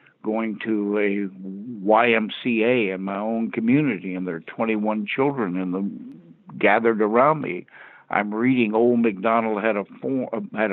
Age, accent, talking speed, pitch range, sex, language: 60-79, American, 135 wpm, 100-115 Hz, male, English